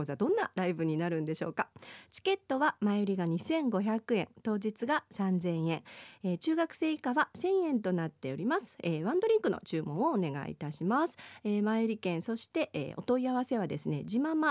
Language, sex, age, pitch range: Japanese, female, 40-59, 160-245 Hz